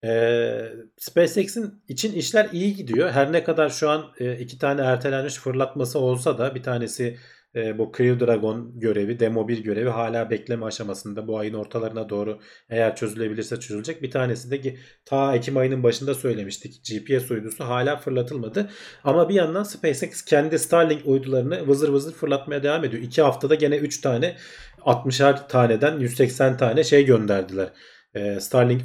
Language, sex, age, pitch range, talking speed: Turkish, male, 40-59, 120-155 Hz, 155 wpm